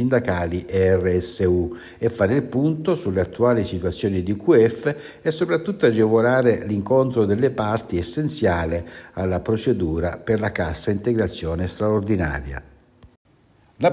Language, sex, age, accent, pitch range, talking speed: Italian, male, 60-79, native, 95-120 Hz, 115 wpm